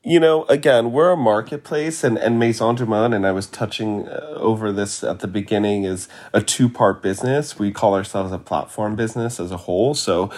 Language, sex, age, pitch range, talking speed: English, male, 30-49, 95-110 Hz, 190 wpm